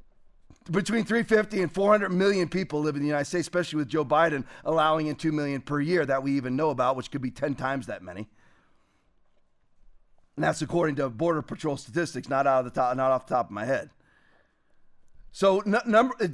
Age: 40-59